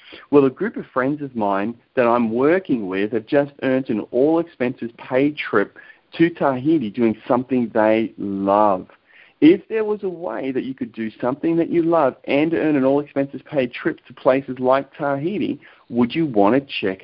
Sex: male